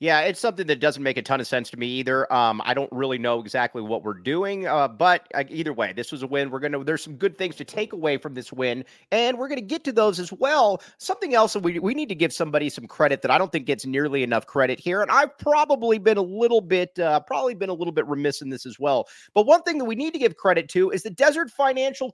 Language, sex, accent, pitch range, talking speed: English, male, American, 145-225 Hz, 280 wpm